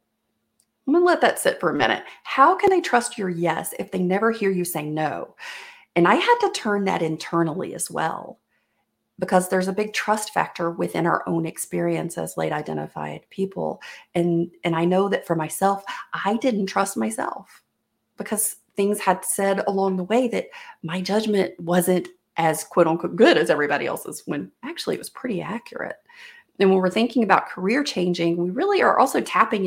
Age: 40-59